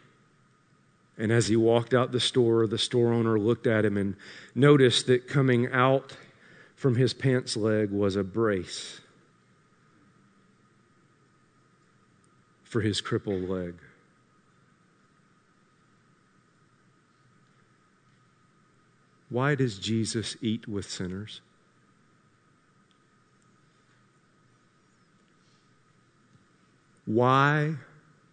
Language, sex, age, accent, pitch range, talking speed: English, male, 50-69, American, 105-130 Hz, 75 wpm